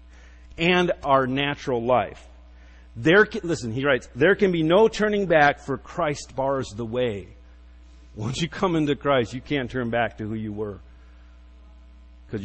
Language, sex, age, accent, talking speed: English, male, 50-69, American, 165 wpm